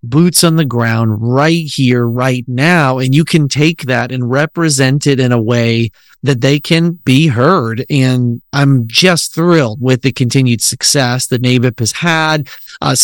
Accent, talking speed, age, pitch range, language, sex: American, 170 wpm, 30-49, 125-165 Hz, English, male